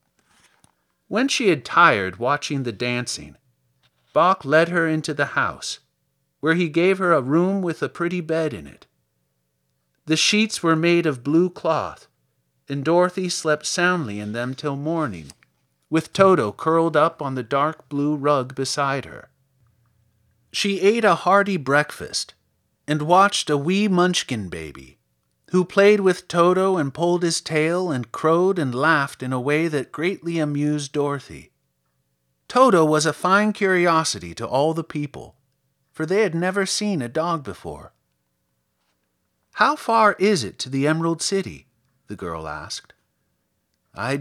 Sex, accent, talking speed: male, American, 150 wpm